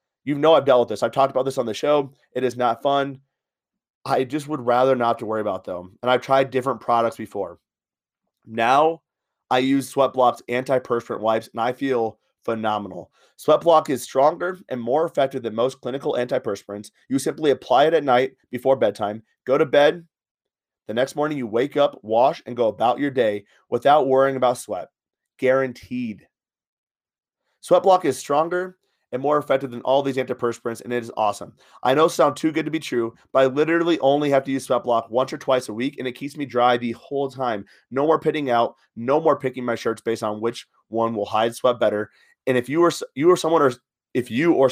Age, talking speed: 30-49, 205 wpm